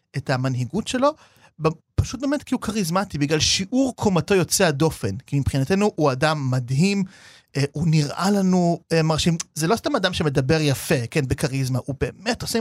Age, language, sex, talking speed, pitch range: 30-49, Hebrew, male, 165 wpm, 140-195 Hz